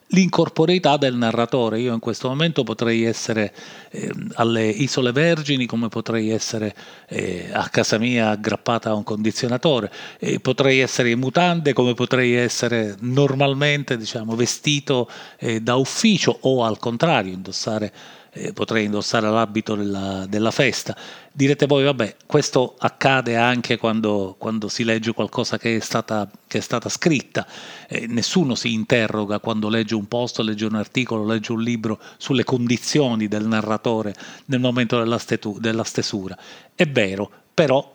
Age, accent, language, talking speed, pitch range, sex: 40-59, native, Italian, 140 wpm, 110-135 Hz, male